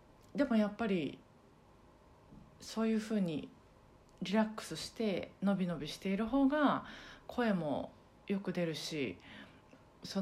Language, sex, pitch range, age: Japanese, female, 175-230 Hz, 40-59